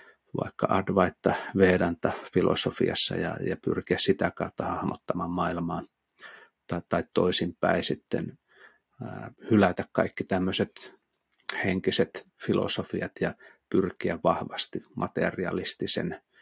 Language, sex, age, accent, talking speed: Finnish, male, 30-49, native, 90 wpm